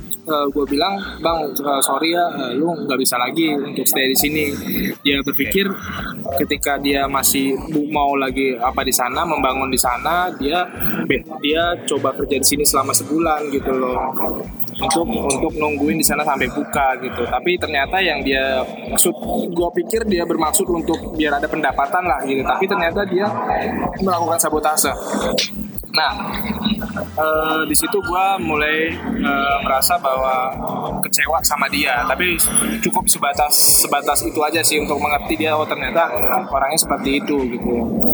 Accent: native